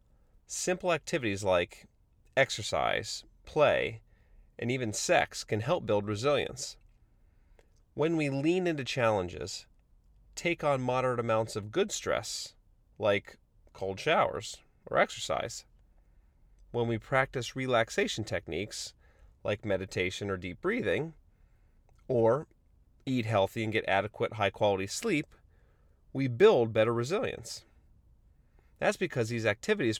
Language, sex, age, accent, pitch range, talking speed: English, male, 30-49, American, 105-140 Hz, 110 wpm